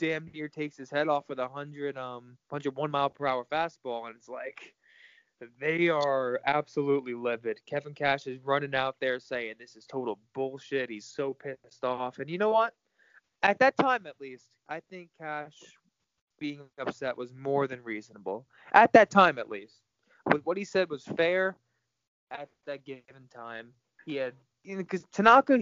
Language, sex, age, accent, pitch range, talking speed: English, male, 20-39, American, 130-175 Hz, 180 wpm